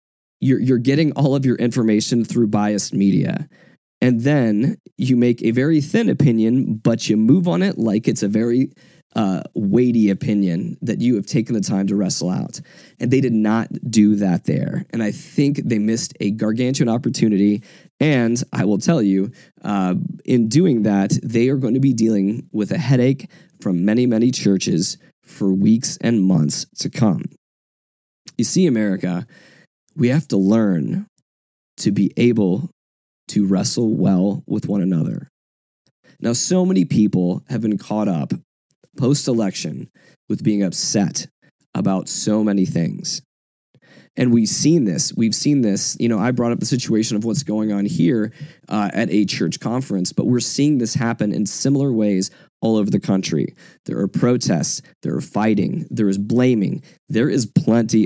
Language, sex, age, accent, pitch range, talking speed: English, male, 20-39, American, 100-125 Hz, 165 wpm